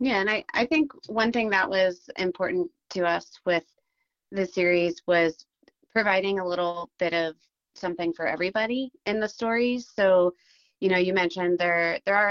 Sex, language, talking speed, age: female, English, 170 wpm, 30-49